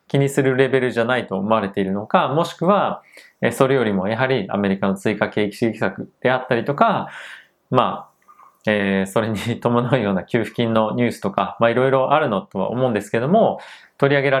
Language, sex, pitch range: Japanese, male, 100-155 Hz